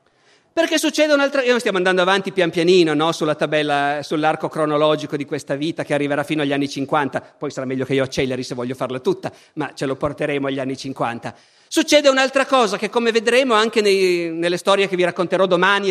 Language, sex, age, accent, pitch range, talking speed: Italian, male, 50-69, native, 160-260 Hz, 210 wpm